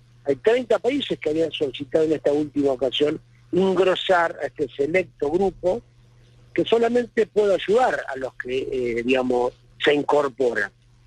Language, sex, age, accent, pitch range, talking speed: Spanish, male, 50-69, Argentinian, 120-185 Hz, 140 wpm